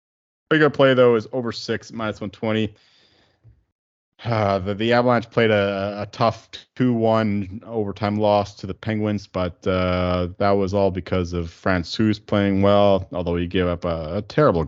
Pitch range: 85-105 Hz